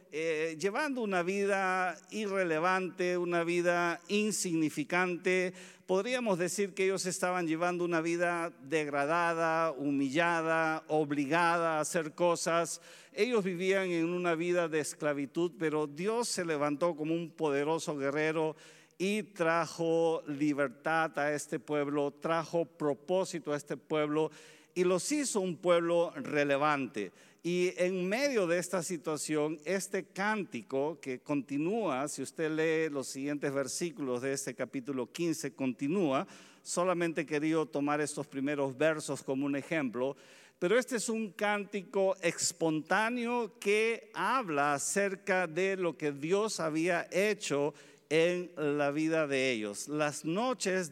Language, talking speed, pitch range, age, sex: Spanish, 125 wpm, 150-185 Hz, 50-69, male